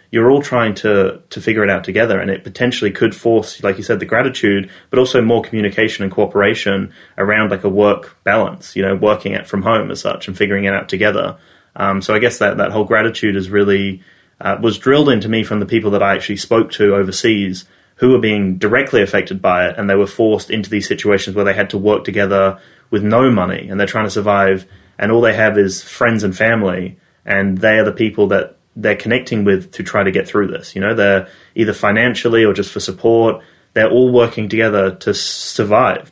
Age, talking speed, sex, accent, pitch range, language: 20-39, 220 wpm, male, Australian, 100-110 Hz, English